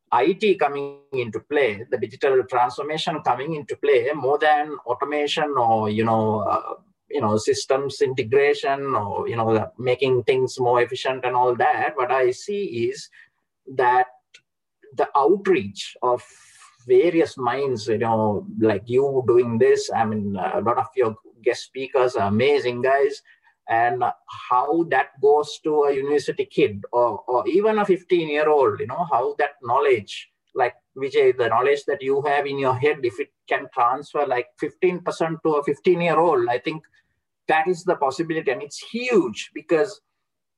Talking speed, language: 155 wpm, English